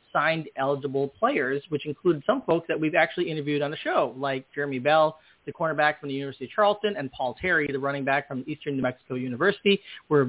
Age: 30-49